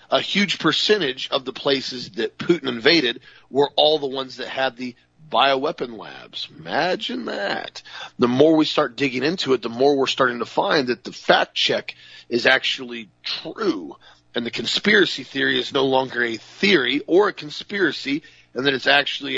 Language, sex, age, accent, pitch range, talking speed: English, male, 40-59, American, 115-140 Hz, 175 wpm